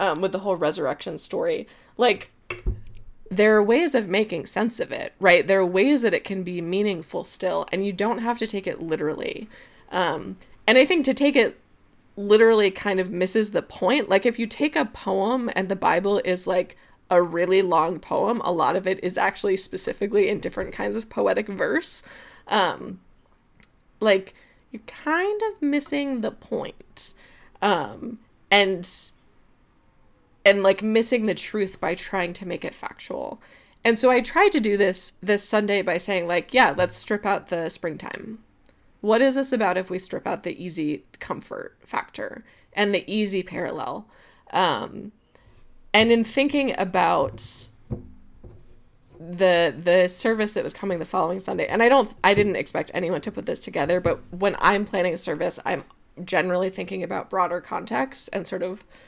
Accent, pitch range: American, 180-230 Hz